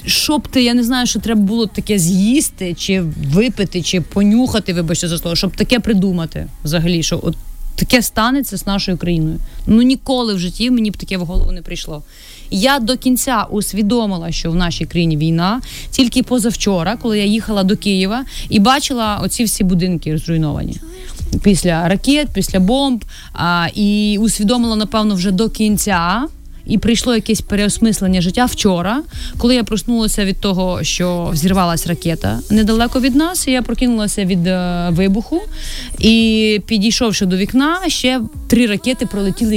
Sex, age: female, 30-49